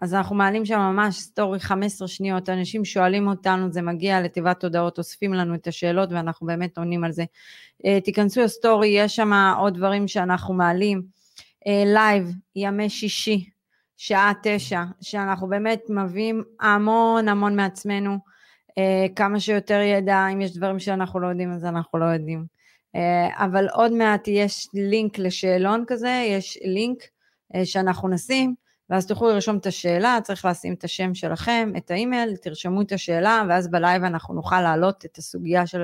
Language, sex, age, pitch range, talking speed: Hebrew, female, 30-49, 180-205 Hz, 150 wpm